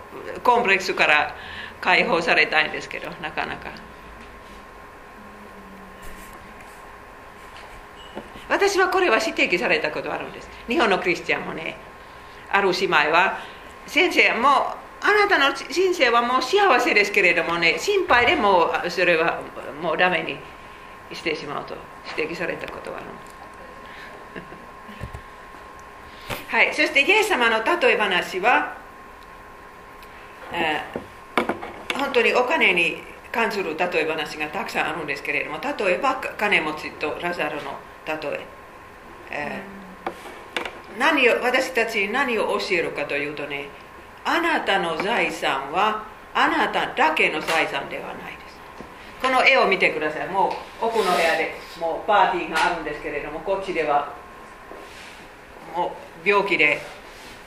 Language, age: Japanese, 50-69